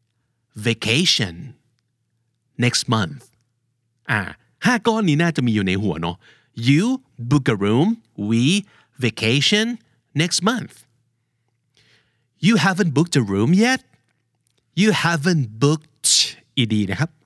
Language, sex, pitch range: Thai, male, 115-160 Hz